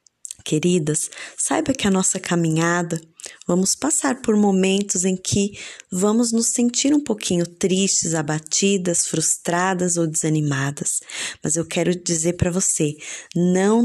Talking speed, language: 125 wpm, Portuguese